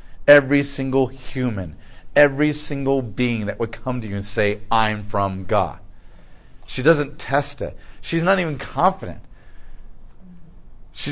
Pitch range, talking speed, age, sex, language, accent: 110-165 Hz, 135 wpm, 40-59, male, English, American